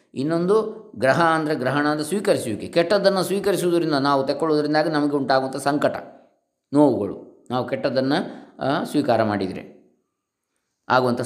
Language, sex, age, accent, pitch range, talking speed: Kannada, male, 20-39, native, 120-155 Hz, 100 wpm